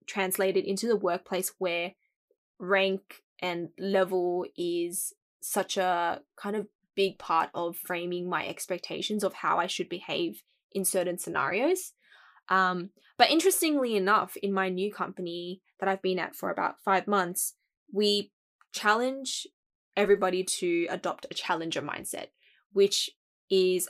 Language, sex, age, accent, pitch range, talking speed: English, female, 10-29, Australian, 180-210 Hz, 135 wpm